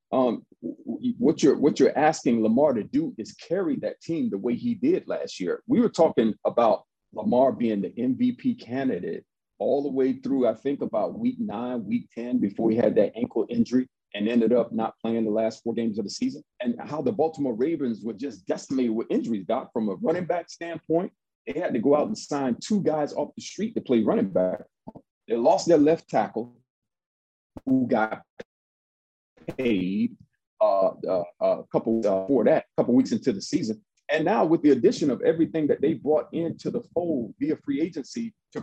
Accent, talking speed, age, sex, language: American, 190 wpm, 40-59, male, English